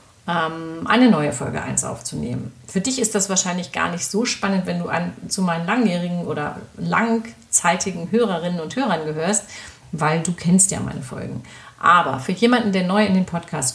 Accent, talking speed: German, 170 wpm